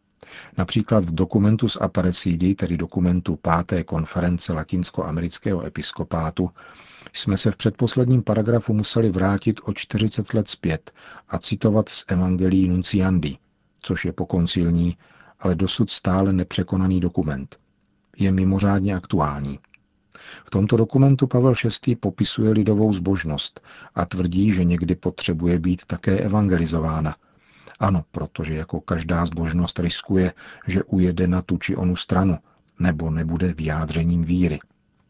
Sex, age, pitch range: male, 50-69, 85-100 Hz